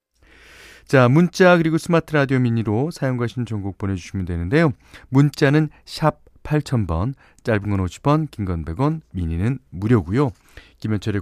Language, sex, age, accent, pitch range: Korean, male, 40-59, native, 95-145 Hz